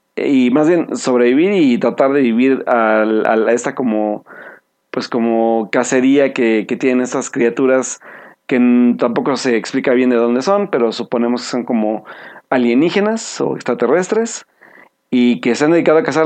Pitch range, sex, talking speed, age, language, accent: 120-145 Hz, male, 165 wpm, 40-59, Spanish, Mexican